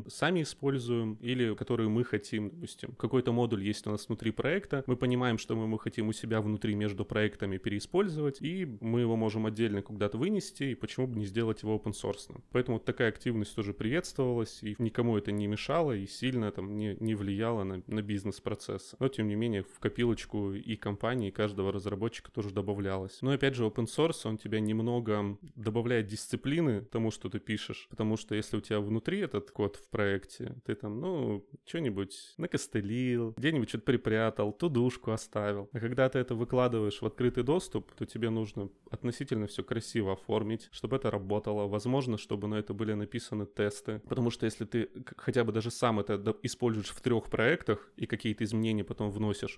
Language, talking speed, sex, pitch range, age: Russian, 180 wpm, male, 105-125 Hz, 20-39